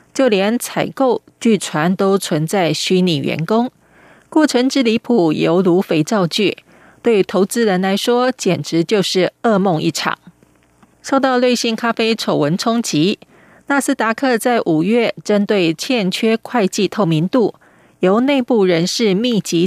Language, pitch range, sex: Chinese, 180-235 Hz, female